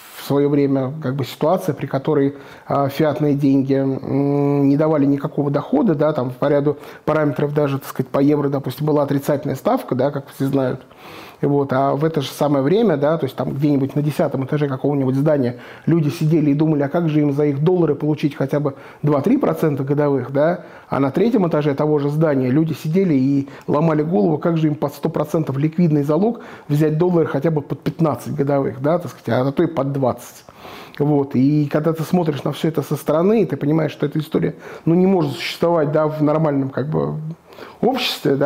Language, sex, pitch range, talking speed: Russian, male, 140-165 Hz, 185 wpm